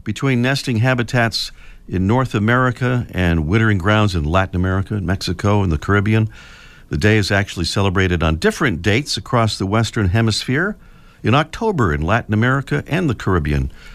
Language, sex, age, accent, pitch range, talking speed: English, male, 50-69, American, 95-130 Hz, 155 wpm